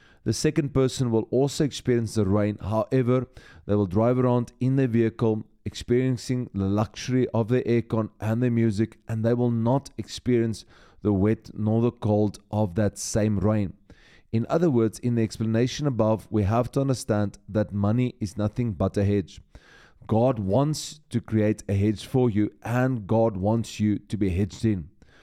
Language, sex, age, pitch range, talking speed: English, male, 30-49, 105-125 Hz, 175 wpm